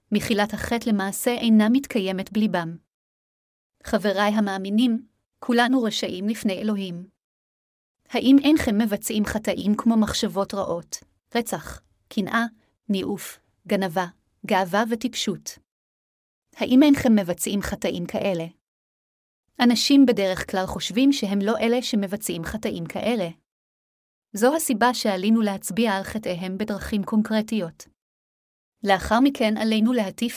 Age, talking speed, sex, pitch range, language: 30-49, 105 wpm, female, 195-235 Hz, Hebrew